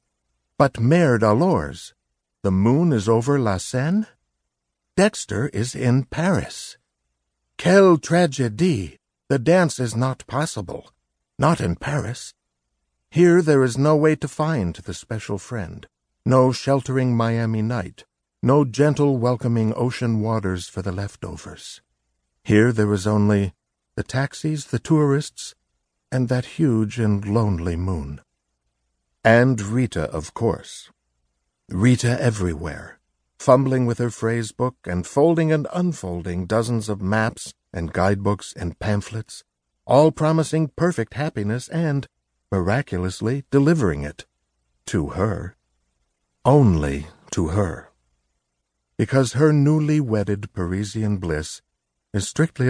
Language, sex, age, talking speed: English, male, 60-79, 115 wpm